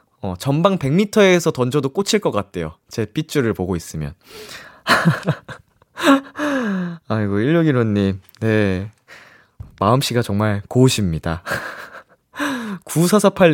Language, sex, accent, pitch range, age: Korean, male, native, 105-175 Hz, 20-39